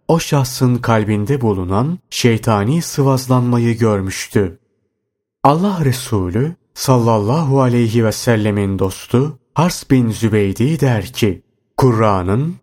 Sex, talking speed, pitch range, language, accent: male, 95 wpm, 105-135 Hz, Turkish, native